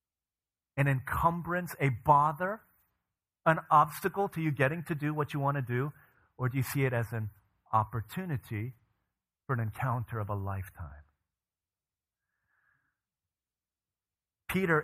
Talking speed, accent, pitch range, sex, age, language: 125 wpm, American, 100-125 Hz, male, 40-59, English